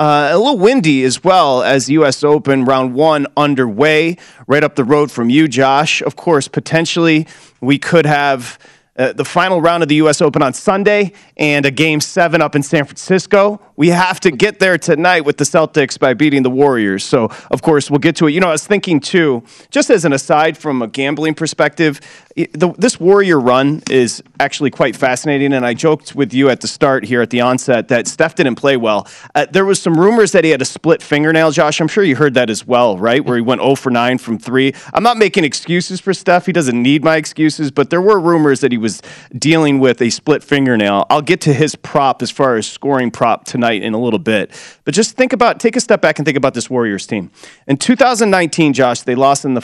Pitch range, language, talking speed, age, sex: 130-170 Hz, English, 225 wpm, 30-49, male